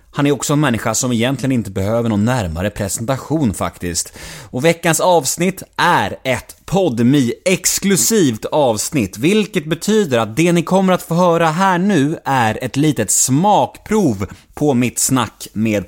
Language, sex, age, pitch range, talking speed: Swedish, male, 30-49, 110-170 Hz, 145 wpm